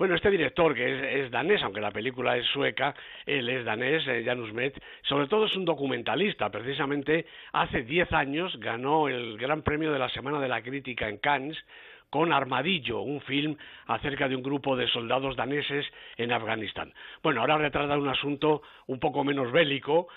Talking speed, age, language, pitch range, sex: 185 wpm, 60-79, Spanish, 130-155 Hz, male